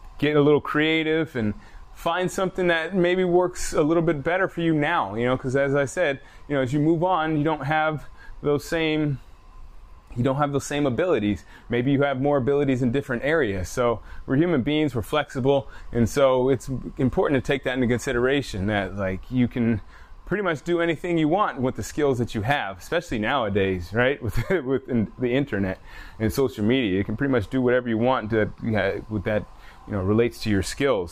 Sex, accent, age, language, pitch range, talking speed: male, American, 20-39, English, 110-145 Hz, 205 wpm